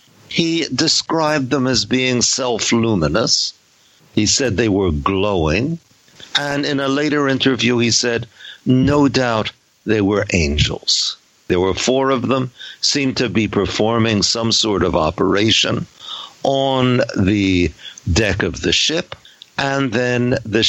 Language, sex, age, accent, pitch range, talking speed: English, male, 60-79, American, 105-140 Hz, 130 wpm